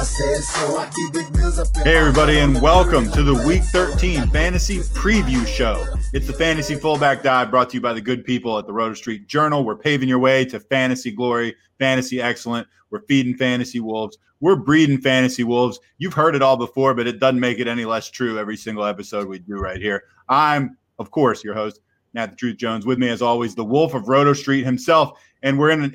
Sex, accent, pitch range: male, American, 115-150 Hz